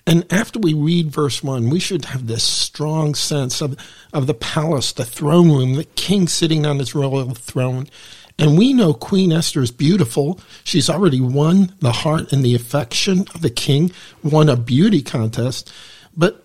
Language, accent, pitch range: English, American, 130-175 Hz